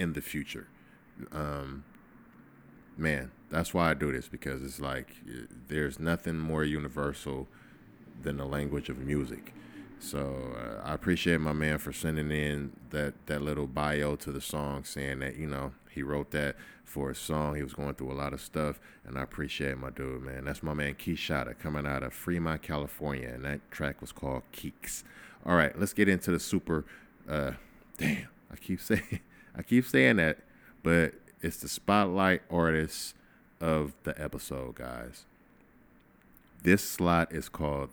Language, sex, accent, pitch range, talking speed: English, male, American, 70-80 Hz, 170 wpm